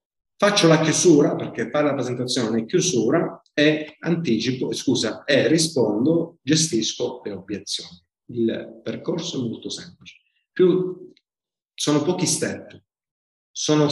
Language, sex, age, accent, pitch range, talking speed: Italian, male, 40-59, native, 110-155 Hz, 115 wpm